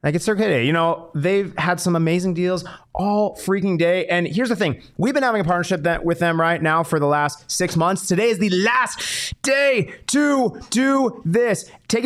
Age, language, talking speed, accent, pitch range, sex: 30-49, English, 210 wpm, American, 150-195 Hz, male